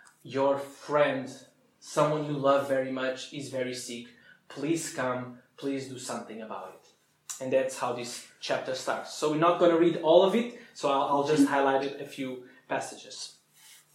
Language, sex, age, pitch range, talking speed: English, male, 20-39, 140-180 Hz, 170 wpm